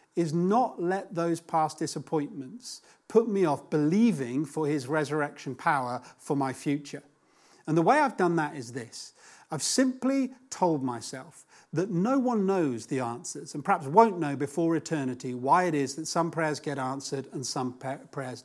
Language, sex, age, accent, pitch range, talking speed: English, male, 40-59, British, 140-185 Hz, 170 wpm